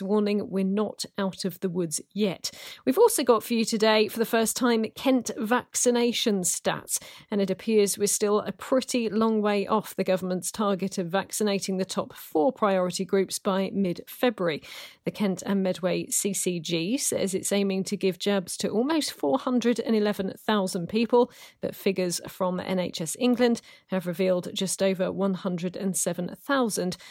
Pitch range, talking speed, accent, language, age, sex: 190-230 Hz, 155 wpm, British, English, 40-59, female